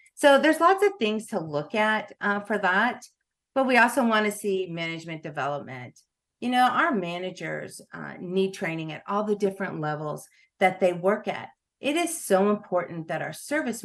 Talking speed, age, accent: 180 wpm, 50-69, American